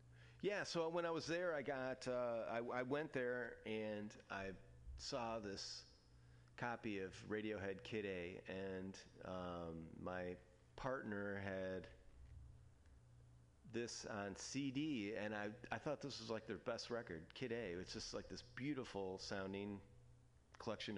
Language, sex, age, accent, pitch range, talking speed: English, male, 40-59, American, 90-120 Hz, 135 wpm